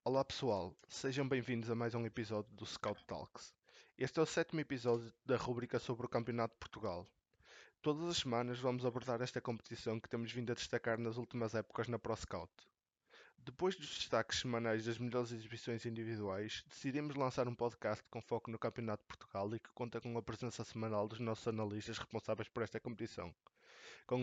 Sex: male